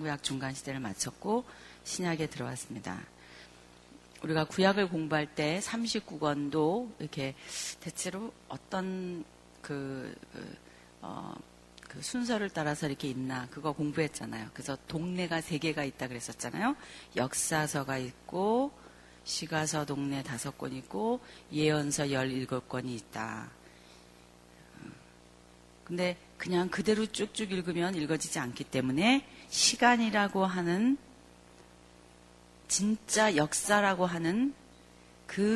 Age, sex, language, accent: 40-59, female, Korean, native